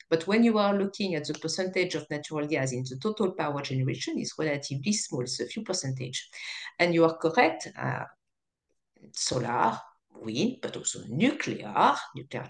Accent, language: French, English